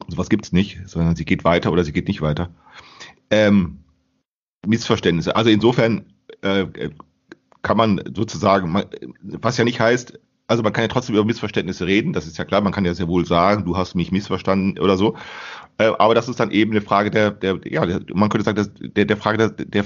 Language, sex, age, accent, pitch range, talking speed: German, male, 40-59, German, 95-110 Hz, 215 wpm